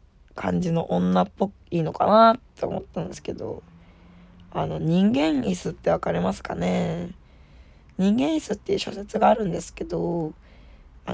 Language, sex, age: Japanese, female, 20-39